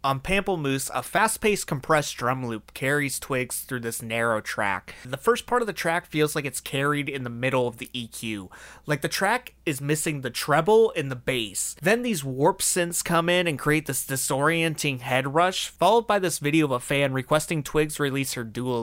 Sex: male